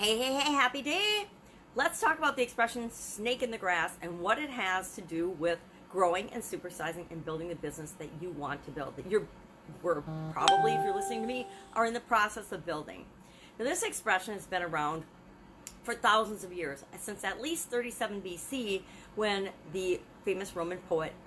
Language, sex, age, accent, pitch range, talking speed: English, female, 40-59, American, 170-225 Hz, 190 wpm